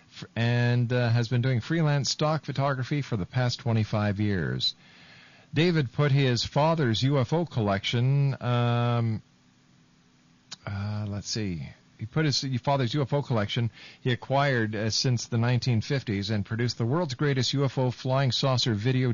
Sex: male